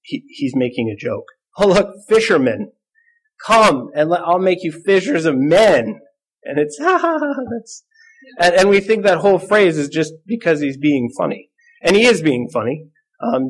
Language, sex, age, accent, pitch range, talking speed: English, male, 30-49, American, 140-200 Hz, 180 wpm